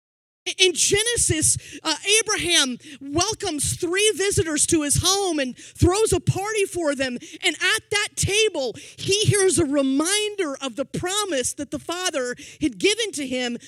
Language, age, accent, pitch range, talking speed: English, 30-49, American, 245-340 Hz, 150 wpm